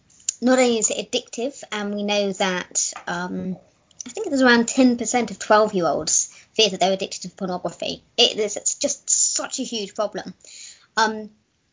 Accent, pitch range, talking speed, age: British, 195-245 Hz, 170 wpm, 20-39